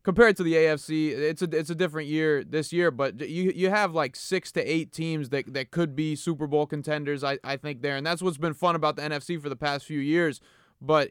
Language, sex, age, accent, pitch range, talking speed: English, male, 20-39, American, 150-175 Hz, 250 wpm